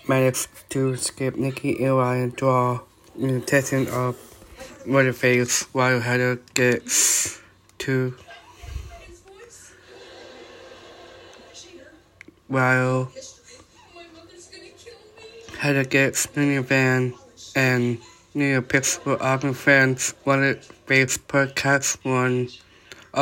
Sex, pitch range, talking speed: male, 130-140 Hz, 85 wpm